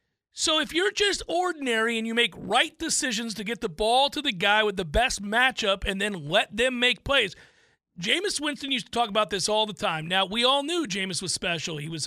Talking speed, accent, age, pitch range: 230 wpm, American, 40-59, 200-250 Hz